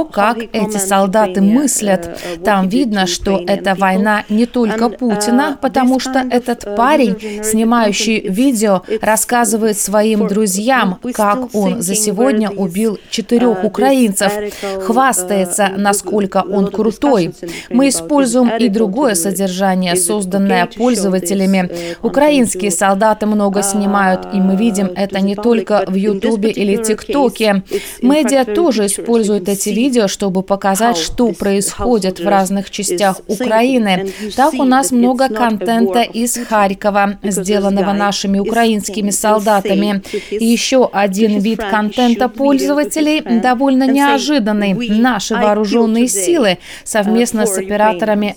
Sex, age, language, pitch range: female, 30-49, Russian, 200-235 Hz